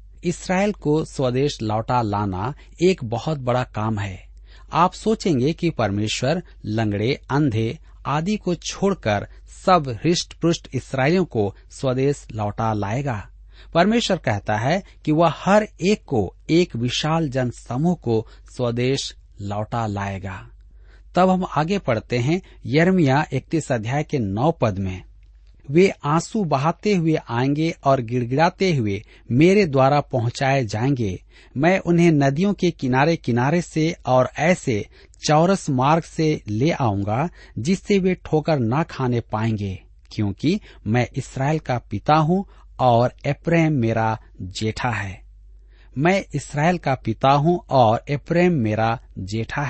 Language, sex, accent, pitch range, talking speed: Hindi, male, native, 110-165 Hz, 130 wpm